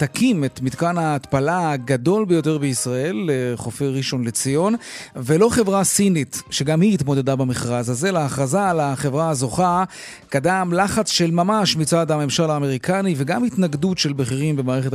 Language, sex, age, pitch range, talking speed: Hebrew, male, 30-49, 140-185 Hz, 135 wpm